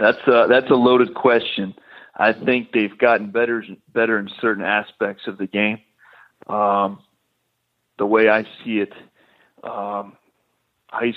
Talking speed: 135 wpm